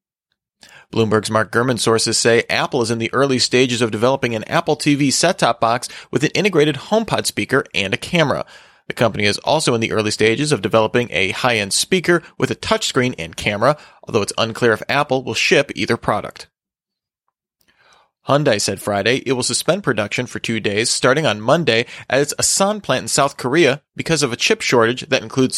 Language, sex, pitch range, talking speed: English, male, 115-145 Hz, 190 wpm